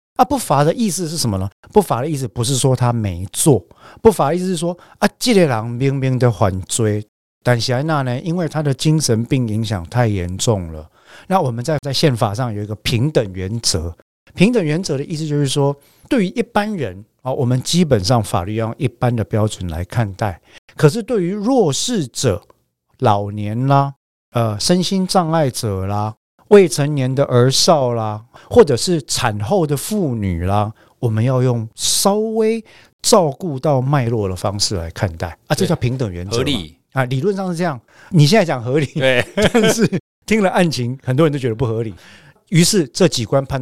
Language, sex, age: Chinese, male, 50-69